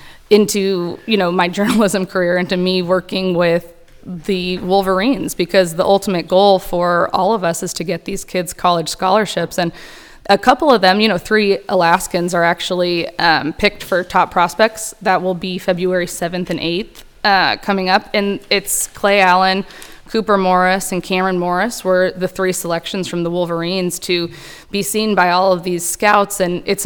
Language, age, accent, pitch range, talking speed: English, 20-39, American, 175-195 Hz, 175 wpm